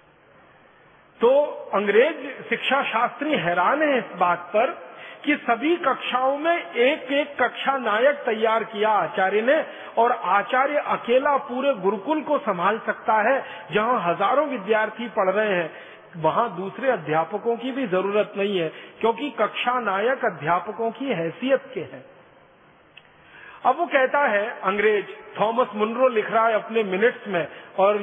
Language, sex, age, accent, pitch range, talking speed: Hindi, male, 50-69, native, 215-260 Hz, 140 wpm